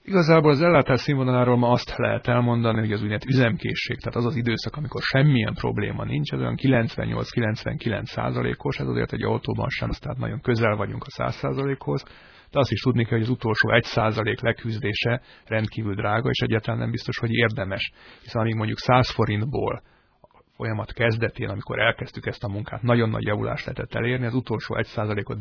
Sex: male